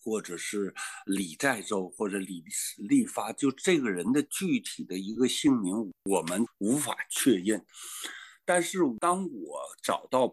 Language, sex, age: Chinese, male, 50-69